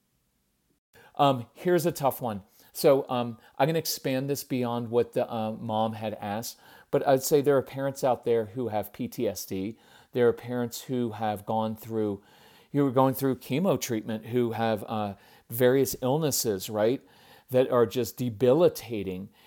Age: 40-59